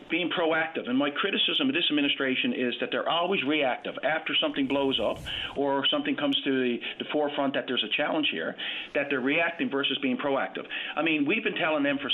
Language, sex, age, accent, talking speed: English, male, 50-69, American, 225 wpm